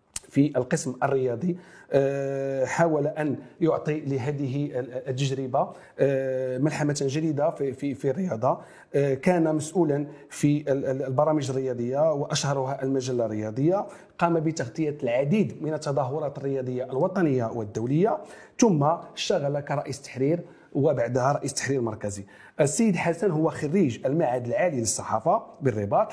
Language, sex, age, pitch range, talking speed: French, male, 40-59, 135-160 Hz, 100 wpm